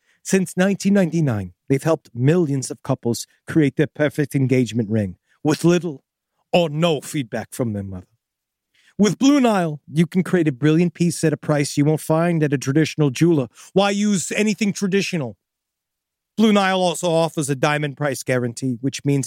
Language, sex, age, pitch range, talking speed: English, male, 40-59, 130-165 Hz, 165 wpm